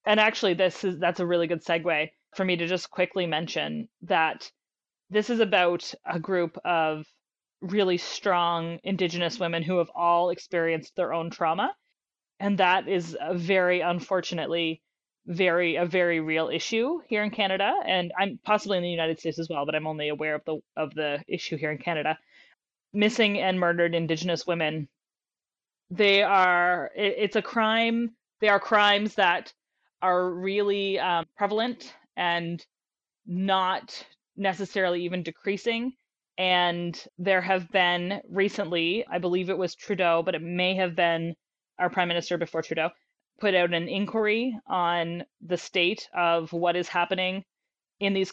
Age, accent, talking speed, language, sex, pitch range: 20-39, American, 155 wpm, English, female, 170-195 Hz